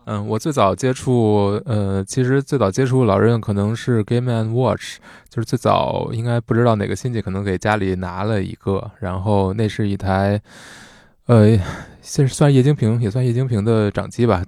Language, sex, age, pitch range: Chinese, male, 20-39, 100-120 Hz